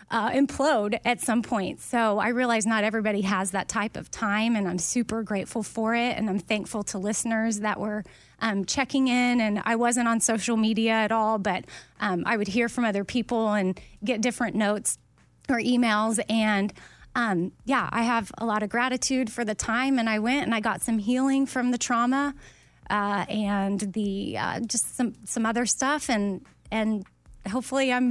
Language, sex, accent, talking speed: English, female, American, 190 wpm